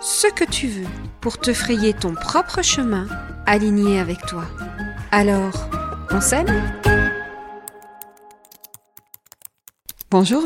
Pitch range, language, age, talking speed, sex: 195-250 Hz, French, 40-59, 100 wpm, female